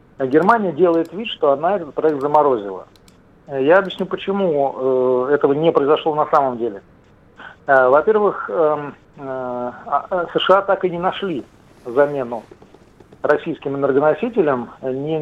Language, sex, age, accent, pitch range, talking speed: Russian, male, 50-69, native, 130-180 Hz, 105 wpm